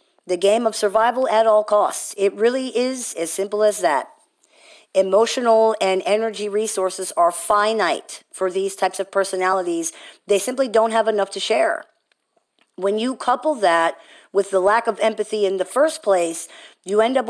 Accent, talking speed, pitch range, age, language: American, 165 wpm, 185-225 Hz, 50-69, English